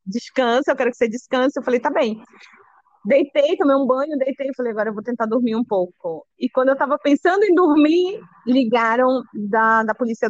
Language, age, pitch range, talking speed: Portuguese, 20-39, 200-265 Hz, 200 wpm